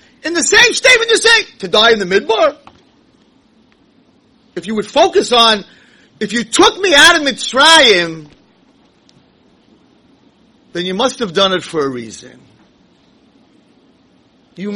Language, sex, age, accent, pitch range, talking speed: English, male, 40-59, American, 215-315 Hz, 135 wpm